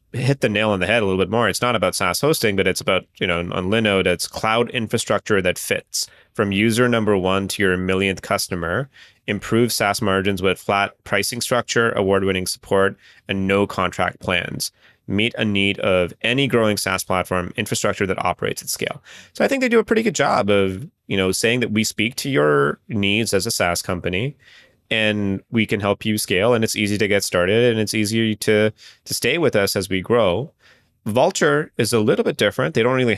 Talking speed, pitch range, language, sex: 210 wpm, 95-115 Hz, English, male